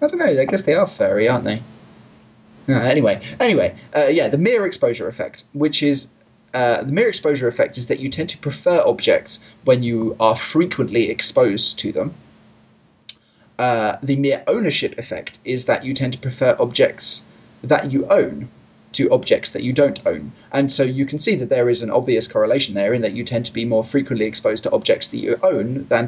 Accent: British